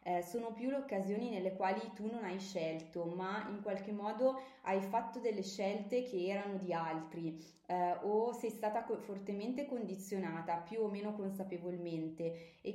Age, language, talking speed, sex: 20-39, Italian, 155 wpm, female